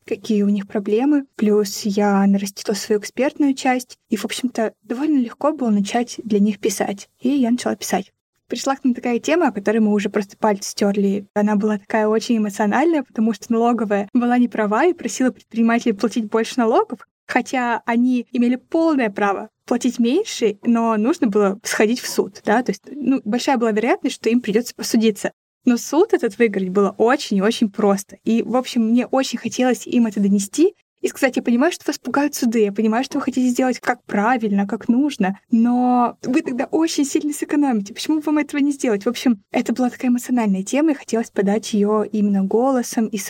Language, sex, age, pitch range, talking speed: Russian, female, 20-39, 215-260 Hz, 190 wpm